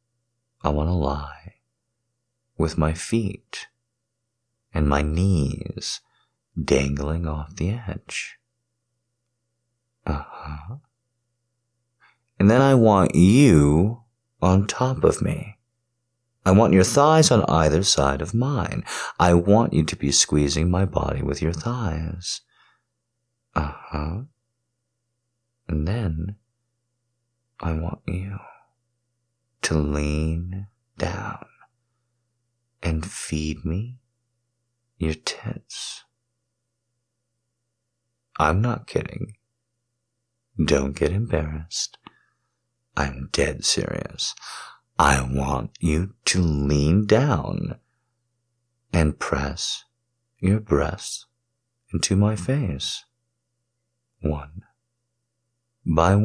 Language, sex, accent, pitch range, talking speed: English, male, American, 85-120 Hz, 90 wpm